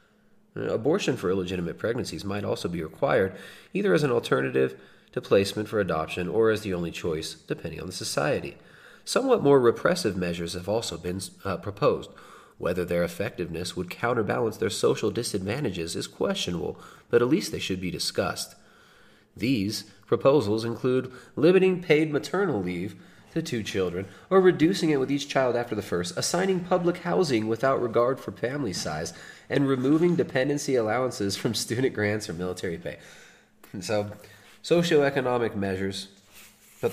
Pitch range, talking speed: 100-140 Hz, 150 wpm